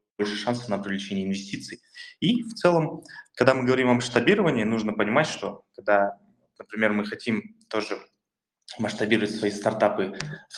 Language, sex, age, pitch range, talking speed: Russian, male, 20-39, 105-130 Hz, 140 wpm